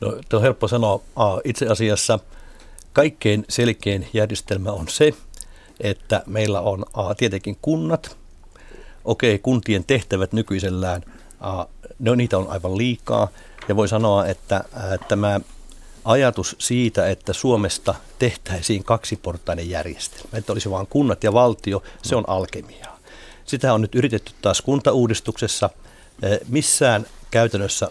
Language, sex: Finnish, male